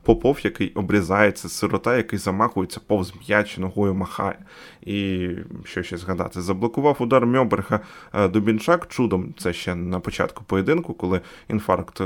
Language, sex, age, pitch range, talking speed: Ukrainian, male, 20-39, 95-110 Hz, 130 wpm